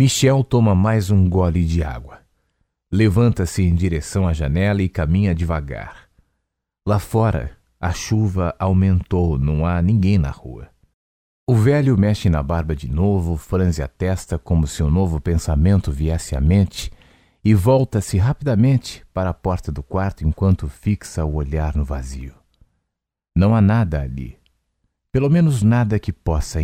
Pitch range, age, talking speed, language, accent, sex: 75-100 Hz, 40-59, 150 wpm, Portuguese, Brazilian, male